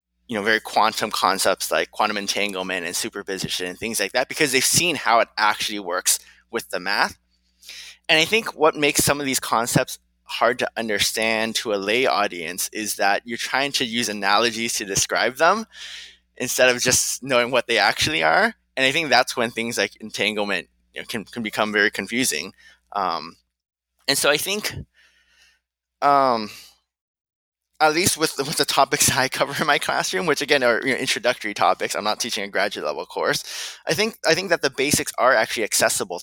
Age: 20-39